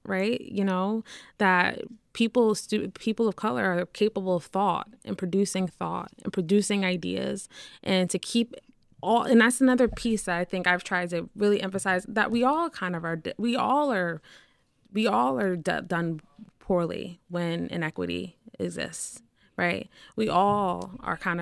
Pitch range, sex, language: 175-205 Hz, female, English